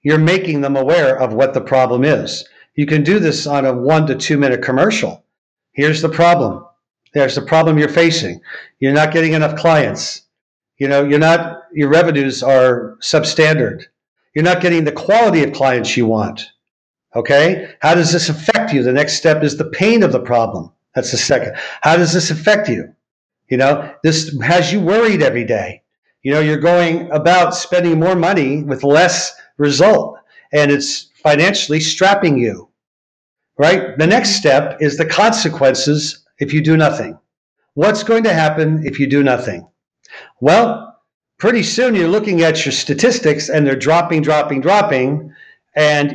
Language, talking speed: English, 170 wpm